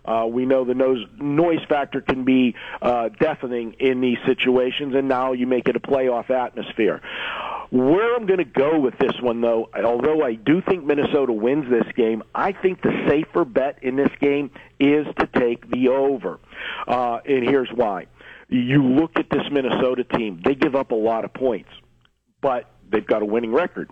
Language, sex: English, male